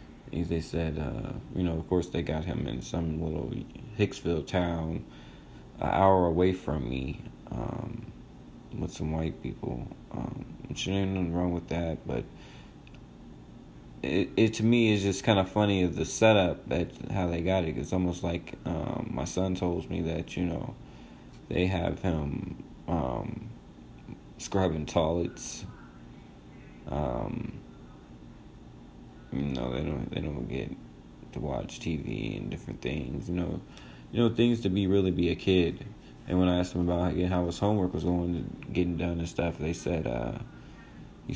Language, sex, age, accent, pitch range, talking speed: English, male, 20-39, American, 80-95 Hz, 160 wpm